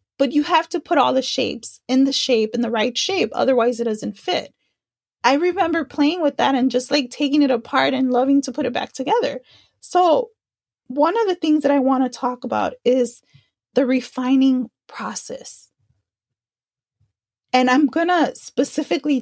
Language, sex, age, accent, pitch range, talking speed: English, female, 30-49, American, 245-310 Hz, 180 wpm